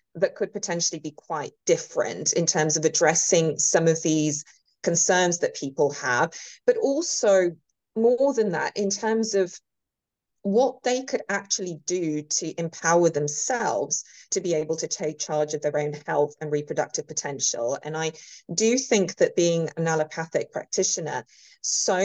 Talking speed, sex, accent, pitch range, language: 150 wpm, female, British, 155-220 Hz, English